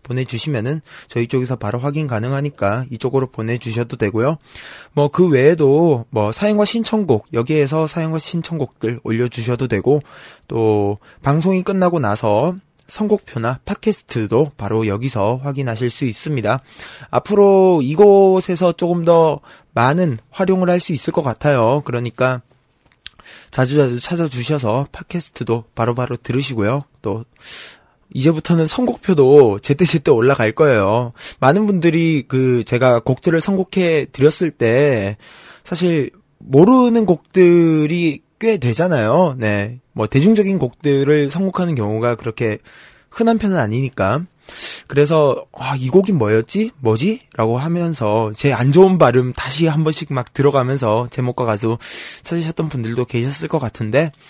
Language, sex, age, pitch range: Korean, male, 20-39, 120-170 Hz